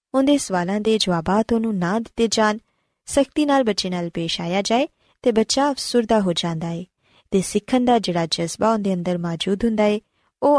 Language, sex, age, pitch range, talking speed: Punjabi, female, 20-39, 180-260 Hz, 185 wpm